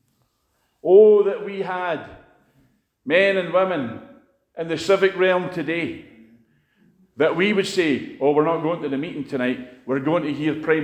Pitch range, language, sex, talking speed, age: 120-165 Hz, English, male, 160 wpm, 50-69